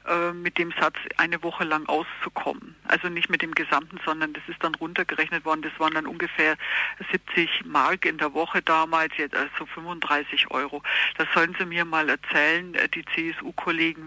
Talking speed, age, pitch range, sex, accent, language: 170 wpm, 50-69, 155-180 Hz, female, German, German